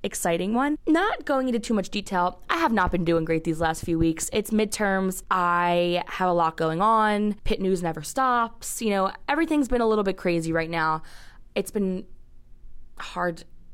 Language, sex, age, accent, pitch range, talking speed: English, female, 20-39, American, 175-220 Hz, 190 wpm